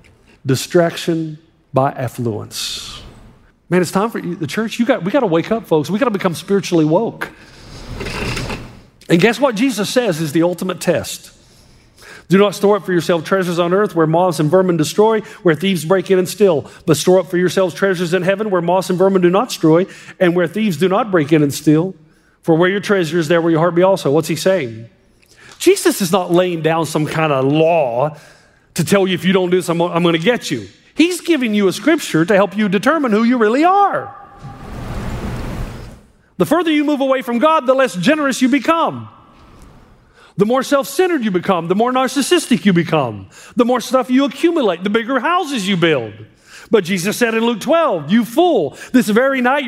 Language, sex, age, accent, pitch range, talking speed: English, male, 40-59, American, 170-245 Hz, 205 wpm